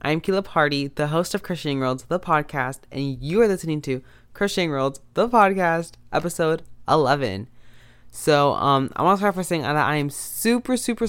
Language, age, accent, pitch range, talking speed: English, 20-39, American, 120-155 Hz, 185 wpm